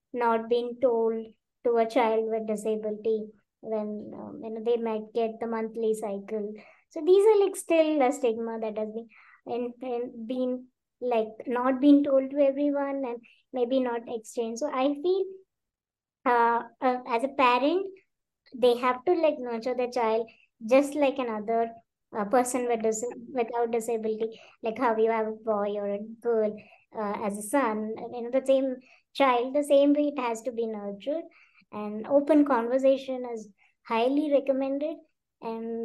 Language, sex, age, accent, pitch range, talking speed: English, male, 20-39, Indian, 220-260 Hz, 165 wpm